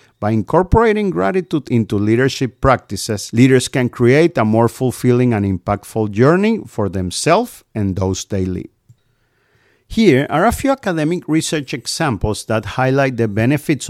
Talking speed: 140 wpm